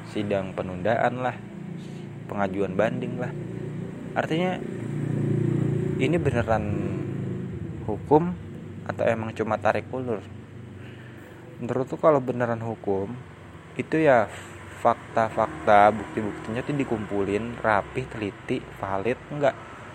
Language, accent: Indonesian, native